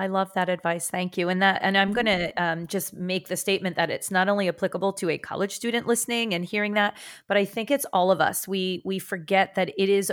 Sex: female